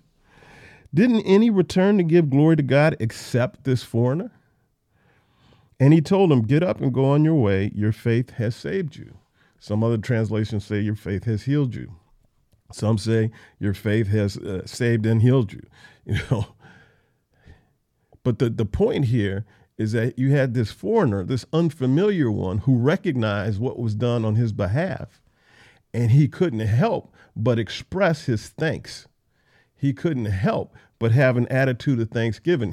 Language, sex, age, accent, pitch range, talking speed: English, male, 50-69, American, 110-155 Hz, 160 wpm